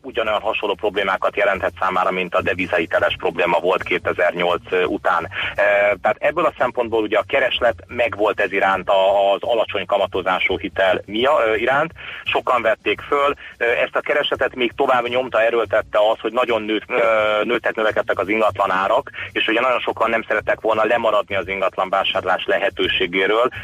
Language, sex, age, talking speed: Hungarian, male, 30-49, 145 wpm